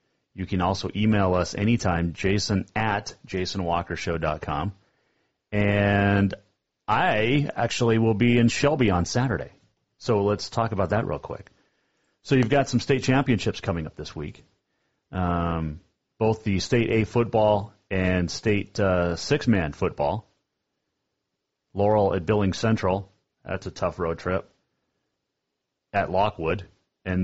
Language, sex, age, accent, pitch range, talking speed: English, male, 30-49, American, 90-110 Hz, 130 wpm